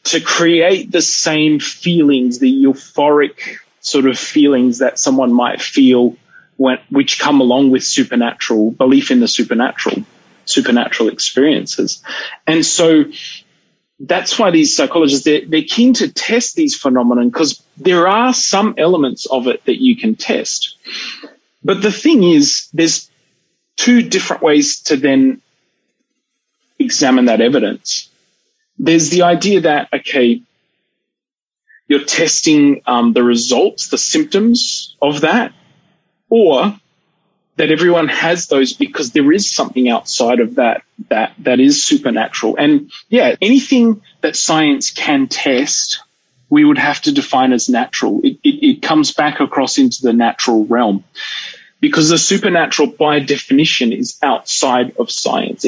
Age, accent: 30-49, Australian